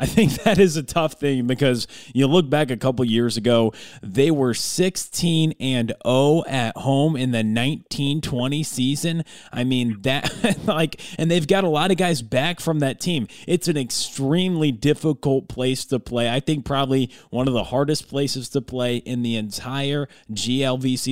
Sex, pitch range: male, 120-150 Hz